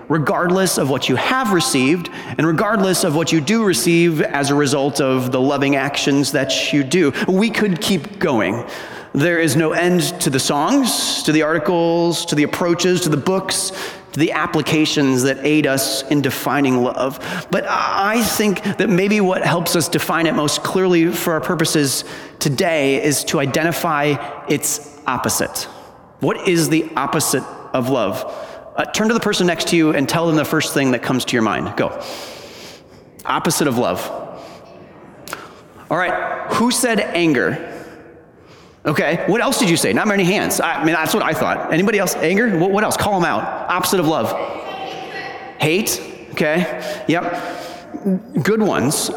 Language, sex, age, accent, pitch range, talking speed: English, male, 30-49, American, 145-185 Hz, 170 wpm